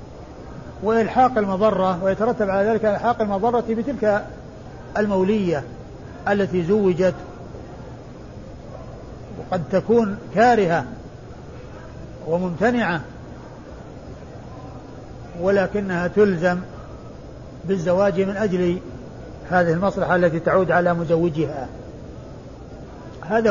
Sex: male